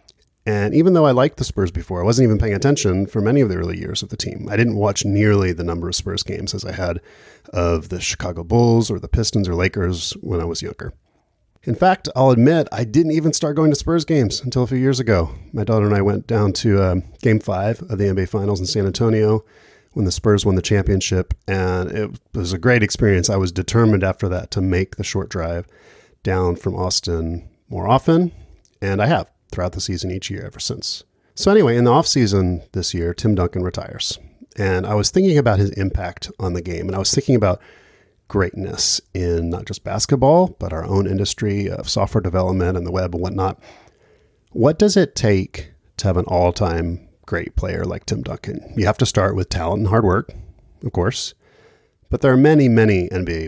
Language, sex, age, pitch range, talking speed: English, male, 30-49, 90-115 Hz, 215 wpm